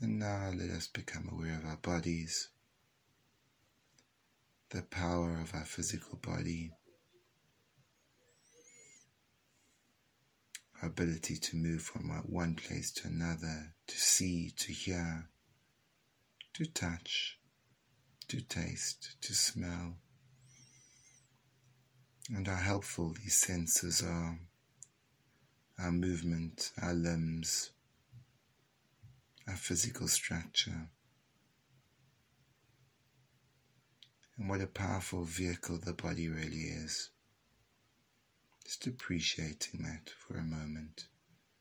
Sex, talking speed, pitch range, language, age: male, 90 wpm, 85-130 Hz, English, 30-49